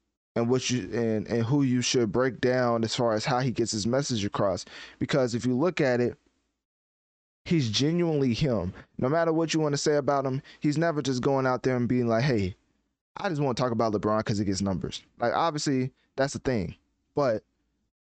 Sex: male